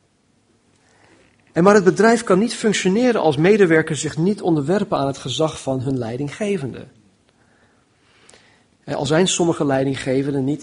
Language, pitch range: Dutch, 140-195 Hz